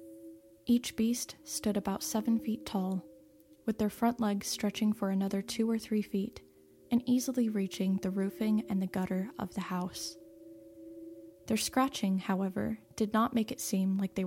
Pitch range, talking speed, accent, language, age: 180-215 Hz, 165 wpm, American, English, 10-29